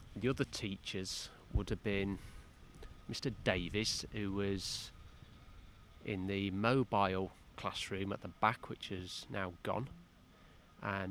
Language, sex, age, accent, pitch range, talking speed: English, male, 30-49, British, 90-110 Hz, 120 wpm